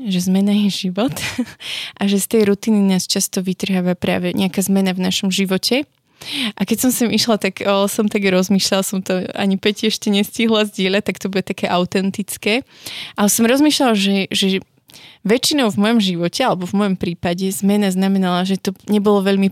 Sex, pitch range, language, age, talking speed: female, 190-220 Hz, Slovak, 20-39, 180 wpm